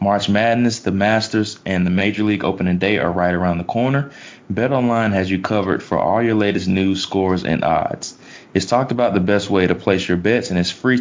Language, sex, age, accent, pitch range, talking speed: English, male, 20-39, American, 90-110 Hz, 220 wpm